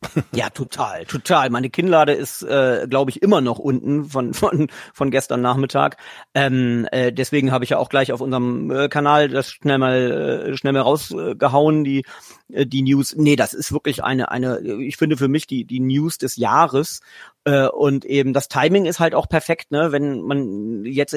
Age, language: 40-59, German